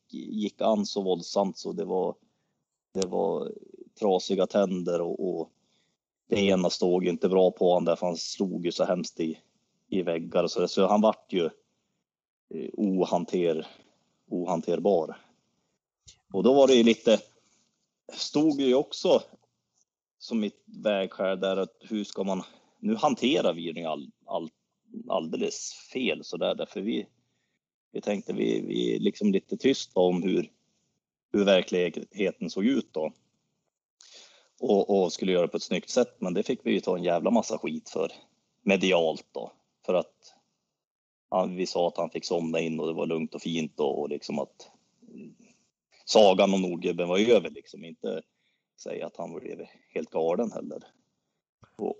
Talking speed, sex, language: 160 wpm, male, Swedish